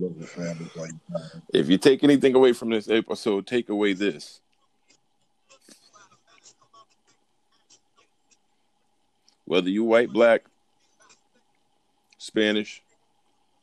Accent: American